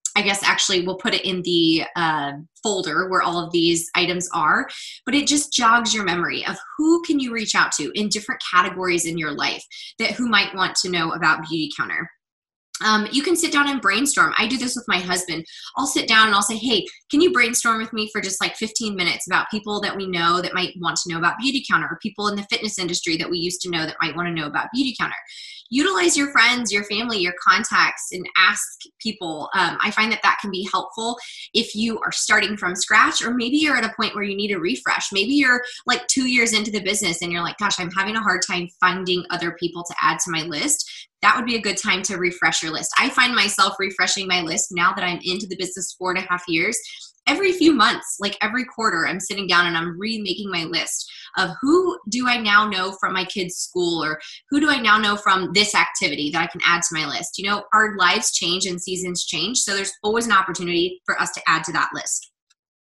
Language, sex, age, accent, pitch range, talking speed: English, female, 20-39, American, 175-235 Hz, 240 wpm